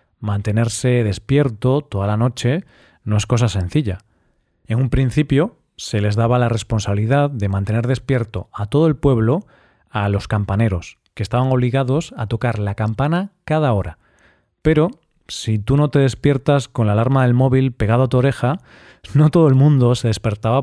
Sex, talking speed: male, 165 wpm